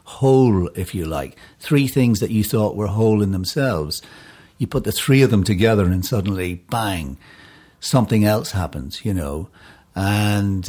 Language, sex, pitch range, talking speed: English, male, 95-115 Hz, 165 wpm